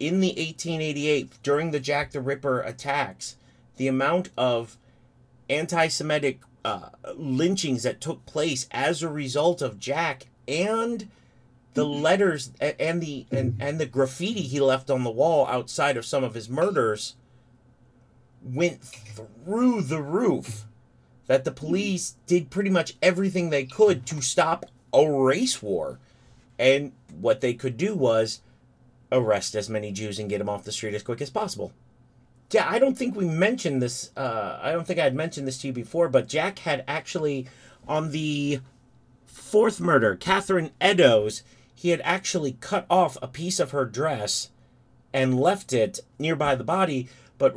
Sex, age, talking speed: male, 30-49, 155 wpm